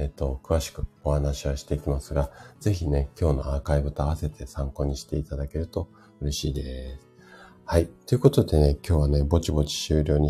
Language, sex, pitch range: Japanese, male, 70-90 Hz